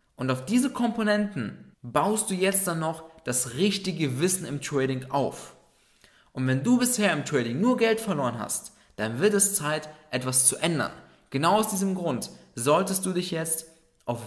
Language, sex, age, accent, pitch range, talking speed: German, male, 20-39, German, 130-180 Hz, 170 wpm